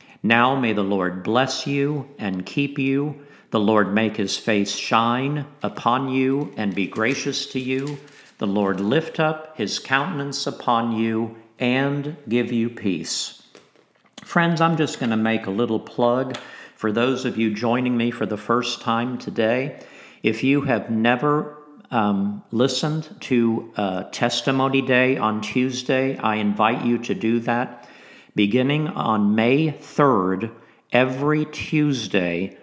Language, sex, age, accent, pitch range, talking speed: English, male, 50-69, American, 110-135 Hz, 145 wpm